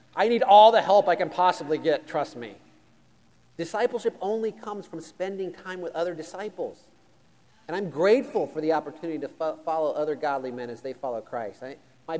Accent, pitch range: American, 140-200 Hz